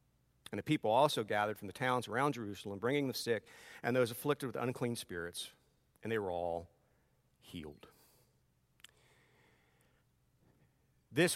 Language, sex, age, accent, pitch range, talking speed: English, male, 50-69, American, 100-150 Hz, 130 wpm